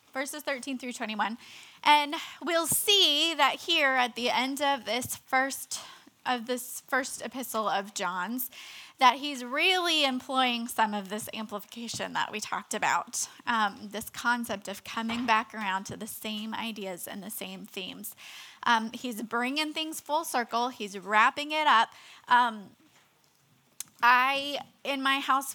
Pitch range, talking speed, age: 220-275 Hz, 145 wpm, 10-29